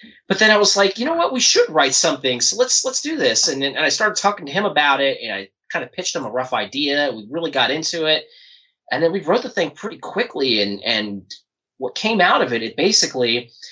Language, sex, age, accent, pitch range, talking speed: English, male, 20-39, American, 110-155 Hz, 255 wpm